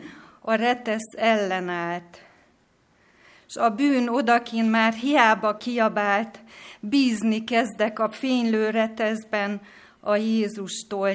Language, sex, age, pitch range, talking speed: Hungarian, female, 30-49, 195-225 Hz, 90 wpm